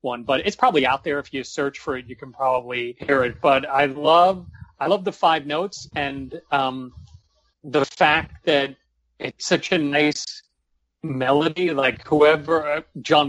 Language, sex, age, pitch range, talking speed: English, male, 40-59, 130-150 Hz, 165 wpm